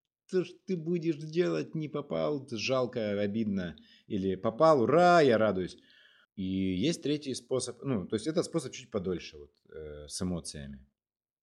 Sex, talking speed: male, 145 wpm